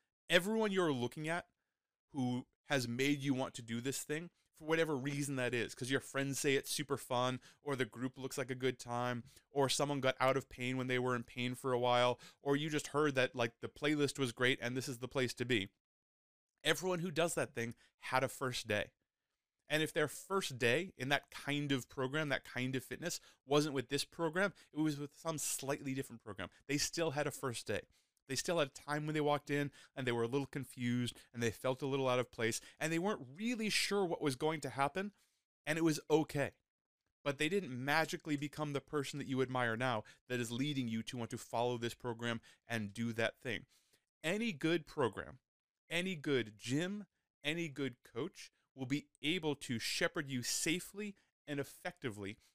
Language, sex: English, male